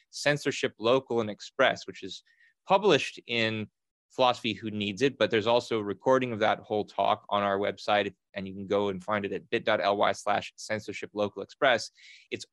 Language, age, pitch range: English, 20-39, 105-125 Hz